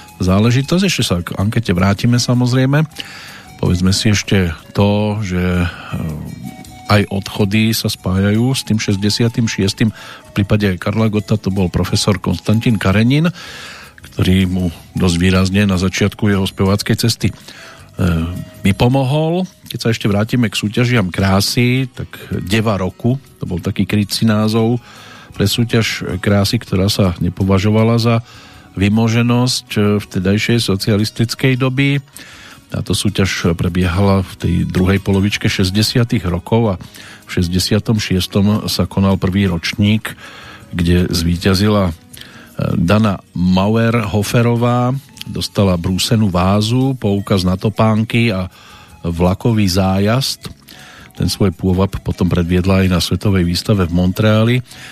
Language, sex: Slovak, male